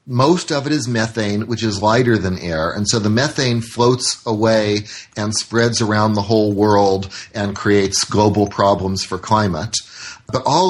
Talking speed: 170 wpm